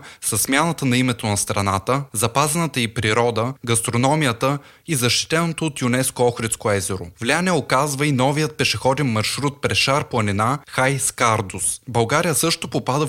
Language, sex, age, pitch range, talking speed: Bulgarian, male, 20-39, 115-145 Hz, 140 wpm